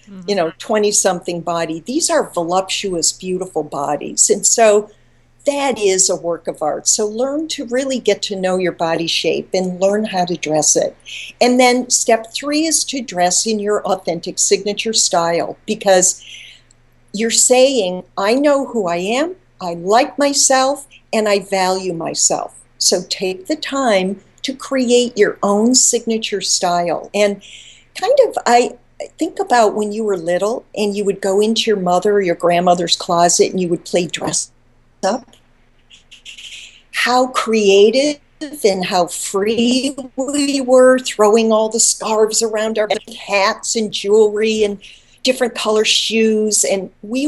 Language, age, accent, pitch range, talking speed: English, 50-69, American, 185-235 Hz, 150 wpm